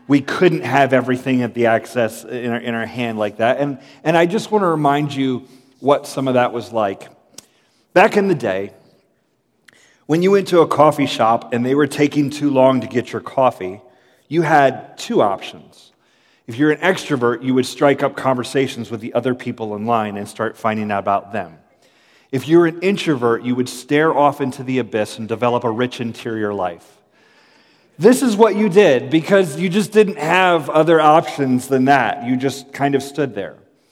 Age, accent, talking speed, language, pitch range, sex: 30-49, American, 195 wpm, English, 125-170 Hz, male